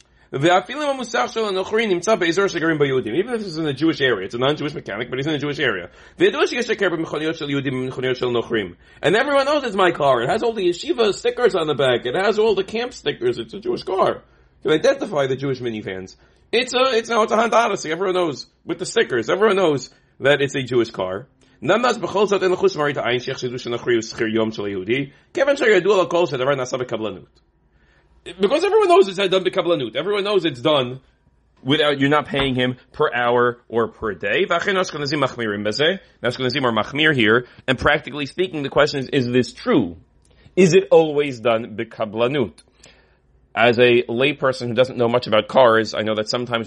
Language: English